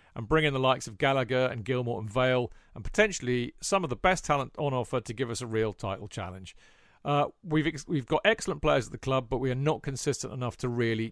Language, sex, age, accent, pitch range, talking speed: English, male, 40-59, British, 115-145 Hz, 245 wpm